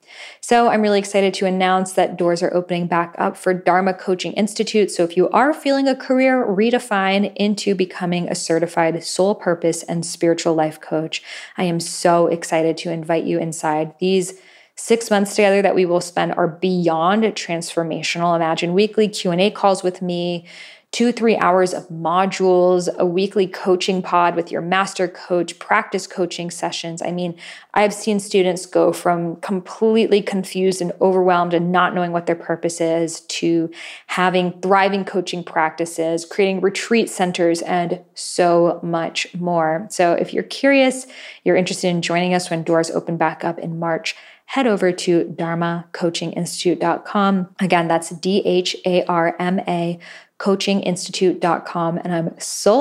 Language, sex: English, female